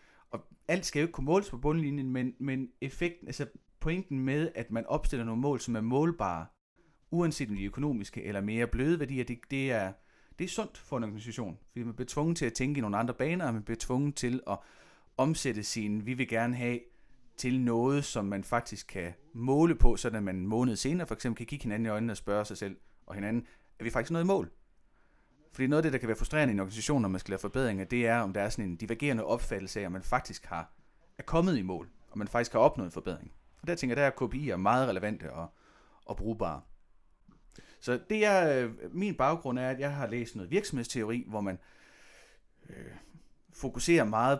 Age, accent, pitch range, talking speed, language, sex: 30-49, native, 110-140 Hz, 220 wpm, Danish, male